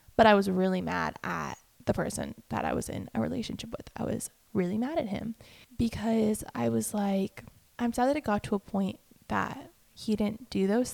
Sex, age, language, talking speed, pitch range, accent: female, 20-39, English, 210 wpm, 185-230 Hz, American